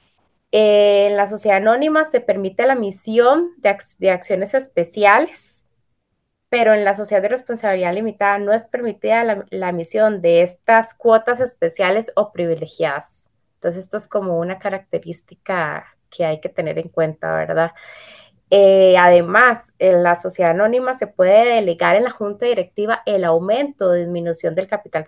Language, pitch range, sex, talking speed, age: Spanish, 180-235 Hz, female, 155 wpm, 20-39